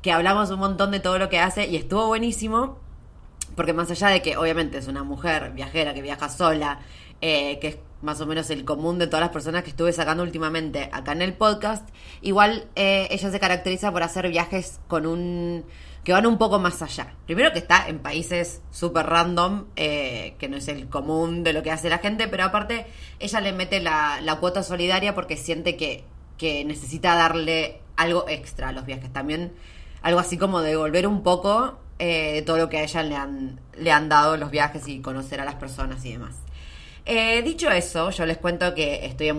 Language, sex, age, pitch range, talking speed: Spanish, female, 20-39, 150-185 Hz, 205 wpm